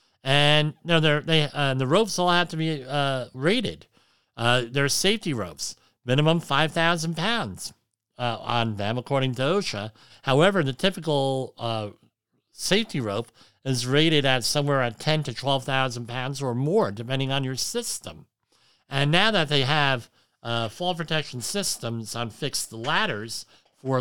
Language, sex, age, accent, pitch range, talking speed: English, male, 50-69, American, 120-160 Hz, 155 wpm